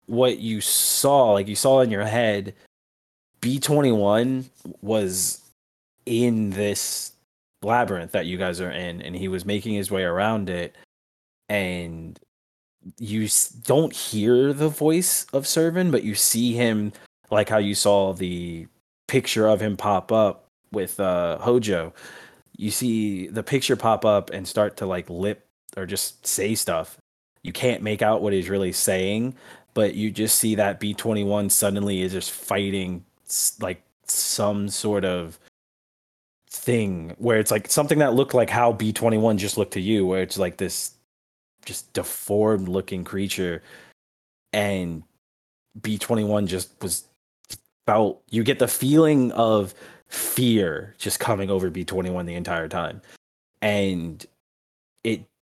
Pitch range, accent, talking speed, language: 90-115 Hz, American, 140 wpm, English